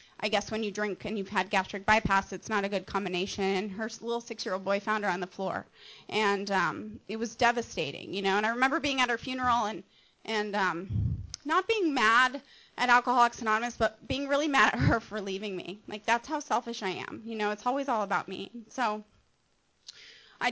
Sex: female